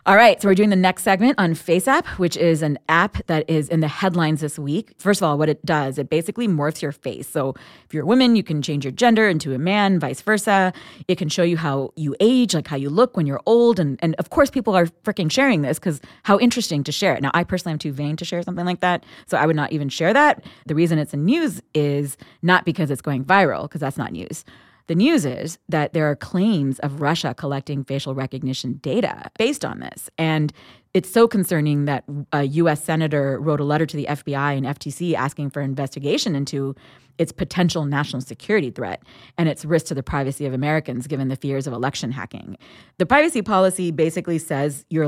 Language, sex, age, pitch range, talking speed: English, female, 30-49, 145-185 Hz, 230 wpm